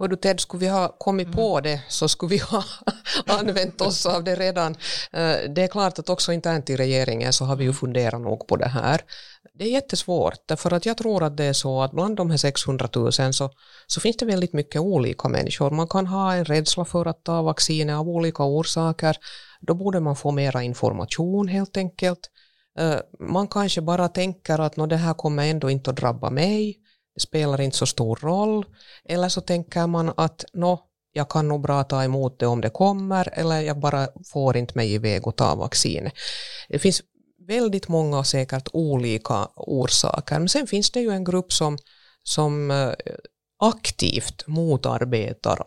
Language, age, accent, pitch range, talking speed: Swedish, 50-69, Finnish, 135-180 Hz, 190 wpm